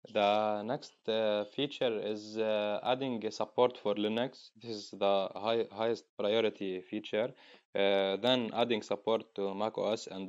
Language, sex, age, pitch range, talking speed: English, male, 20-39, 100-115 Hz, 145 wpm